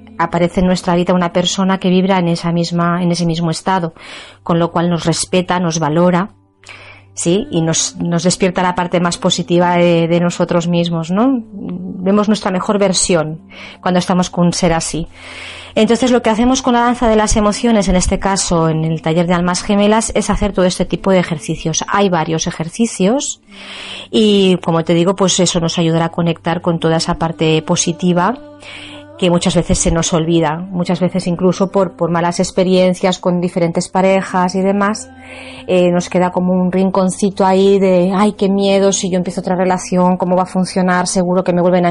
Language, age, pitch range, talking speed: Spanish, 30-49, 170-195 Hz, 190 wpm